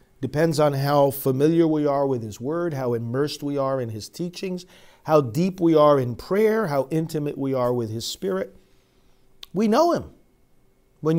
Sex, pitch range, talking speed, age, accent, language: male, 130-180 Hz, 175 wpm, 50-69, American, English